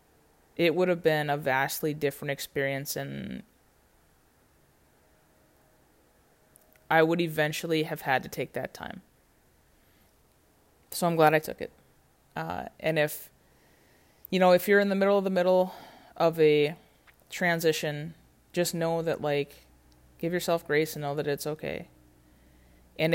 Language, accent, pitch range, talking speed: English, American, 140-180 Hz, 135 wpm